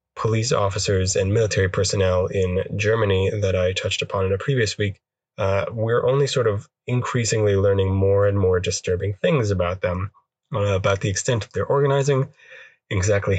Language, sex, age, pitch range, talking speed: English, male, 20-39, 95-115 Hz, 165 wpm